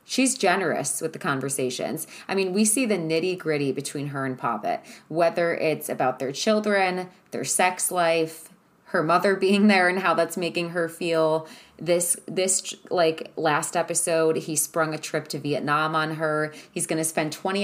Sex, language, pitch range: female, English, 155-195 Hz